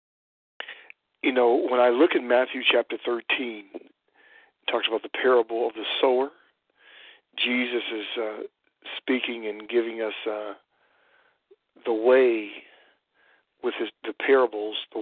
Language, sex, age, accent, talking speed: English, male, 50-69, American, 130 wpm